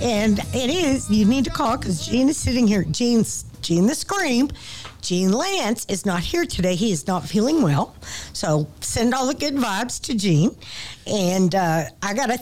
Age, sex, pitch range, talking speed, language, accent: 50-69, female, 180-290 Hz, 195 wpm, English, American